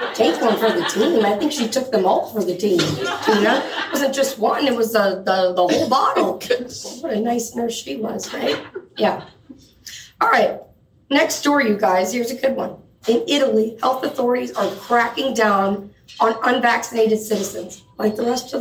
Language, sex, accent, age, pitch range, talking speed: English, female, American, 30-49, 195-250 Hz, 185 wpm